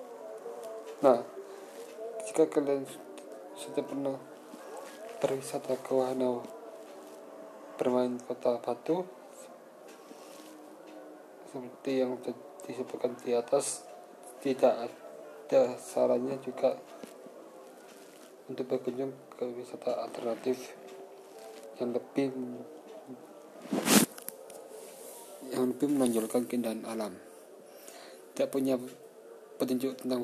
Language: Indonesian